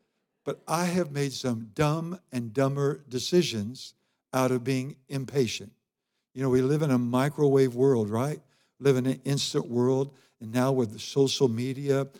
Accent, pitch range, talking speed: American, 120-145 Hz, 160 wpm